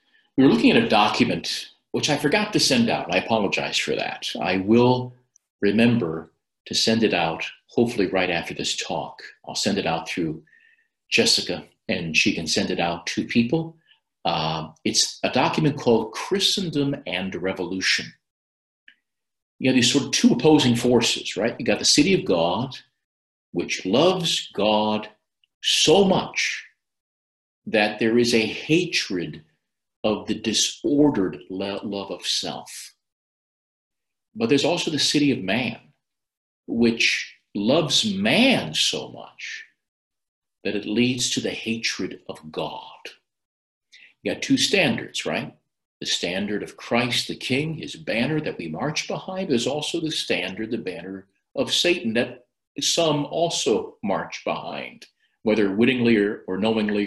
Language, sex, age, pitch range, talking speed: English, male, 50-69, 100-150 Hz, 145 wpm